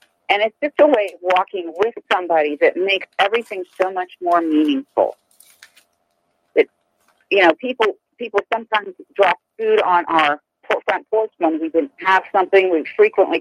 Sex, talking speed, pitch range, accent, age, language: female, 155 wpm, 160-260 Hz, American, 50-69, English